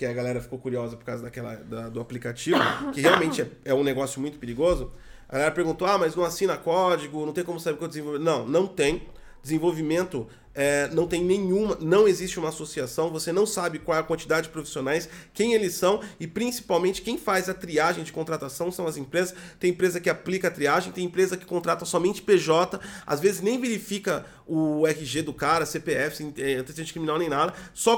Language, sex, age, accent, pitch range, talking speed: Portuguese, male, 30-49, Brazilian, 155-195 Hz, 200 wpm